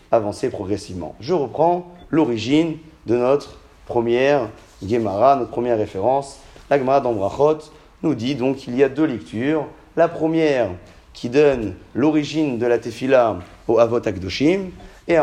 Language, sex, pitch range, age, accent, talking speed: French, male, 110-150 Hz, 30-49, French, 135 wpm